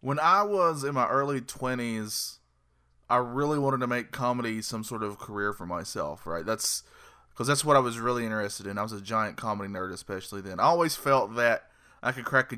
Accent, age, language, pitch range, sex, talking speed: American, 20-39, English, 110-135 Hz, male, 215 wpm